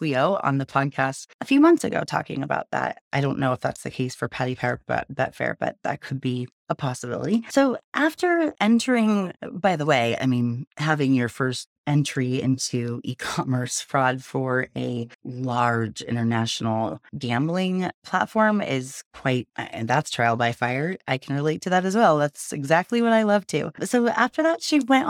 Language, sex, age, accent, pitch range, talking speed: English, female, 30-49, American, 130-200 Hz, 180 wpm